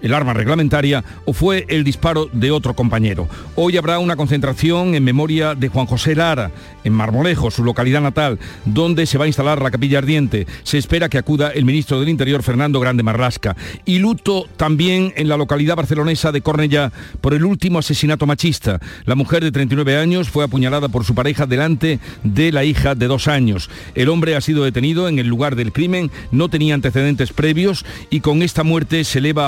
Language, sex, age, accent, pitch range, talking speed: Spanish, male, 50-69, Spanish, 130-160 Hz, 195 wpm